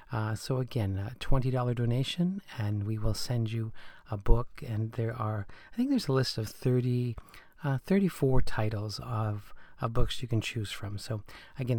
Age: 40-59